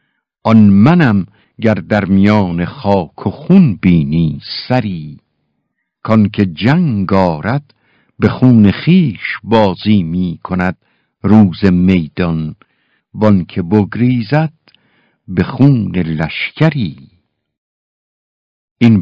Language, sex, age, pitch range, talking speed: Persian, male, 60-79, 90-120 Hz, 90 wpm